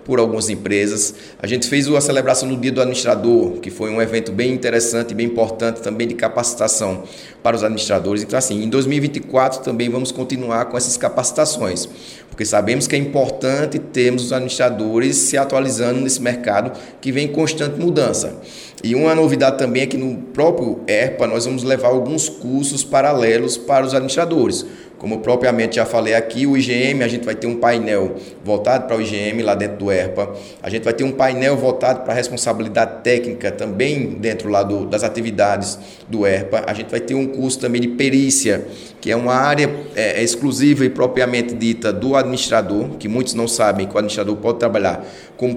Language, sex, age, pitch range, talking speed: Portuguese, male, 20-39, 110-130 Hz, 185 wpm